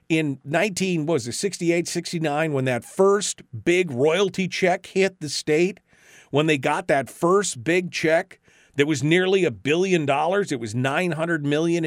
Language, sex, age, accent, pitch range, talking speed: English, male, 40-59, American, 150-205 Hz, 155 wpm